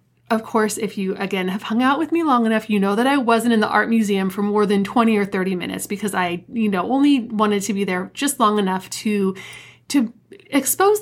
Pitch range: 195-235 Hz